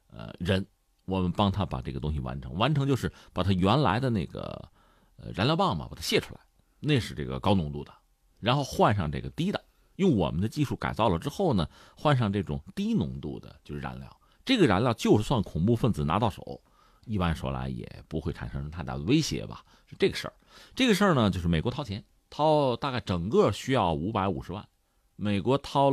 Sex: male